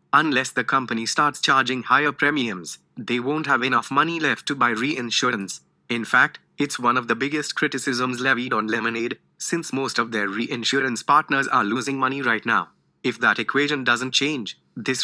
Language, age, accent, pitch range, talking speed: English, 20-39, Indian, 115-140 Hz, 175 wpm